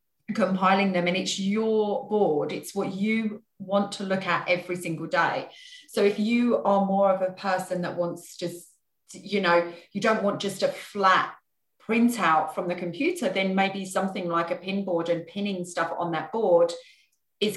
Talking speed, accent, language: 180 wpm, British, English